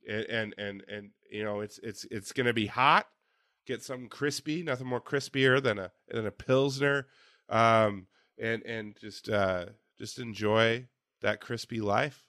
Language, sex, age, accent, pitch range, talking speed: English, male, 20-39, American, 100-115 Hz, 160 wpm